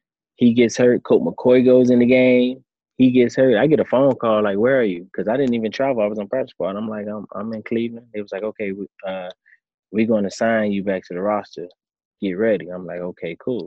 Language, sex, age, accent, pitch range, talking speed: English, male, 20-39, American, 90-115 Hz, 250 wpm